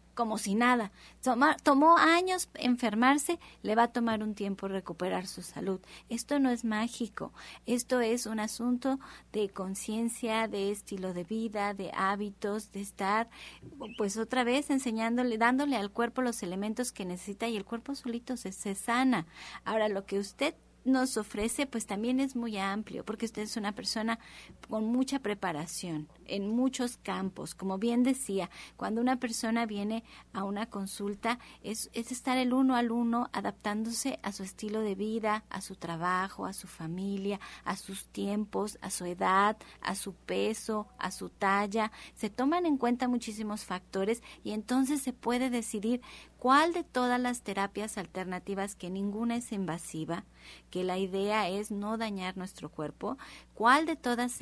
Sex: female